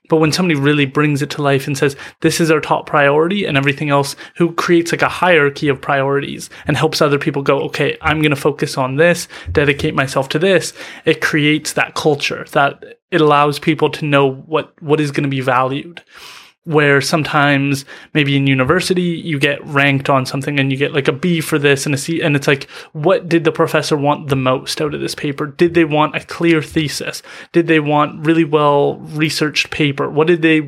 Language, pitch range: English, 140-160 Hz